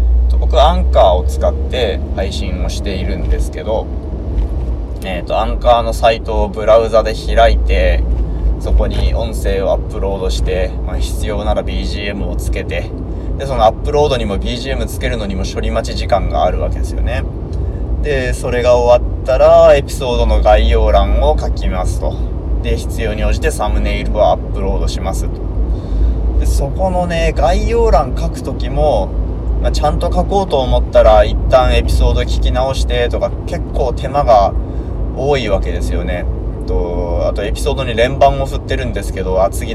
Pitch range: 75-105 Hz